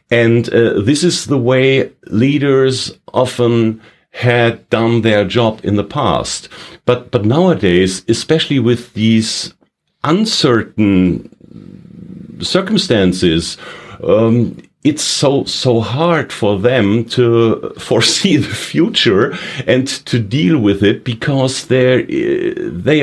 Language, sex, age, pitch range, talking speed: English, male, 50-69, 110-135 Hz, 110 wpm